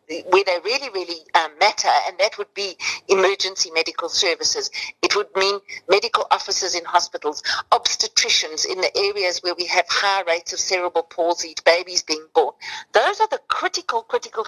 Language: English